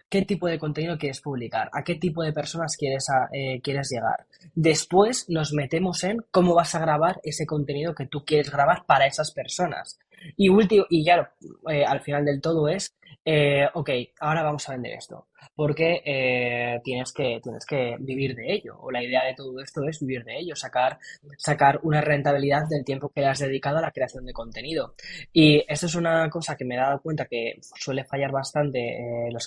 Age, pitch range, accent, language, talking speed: 10-29, 130-155 Hz, Spanish, Spanish, 200 wpm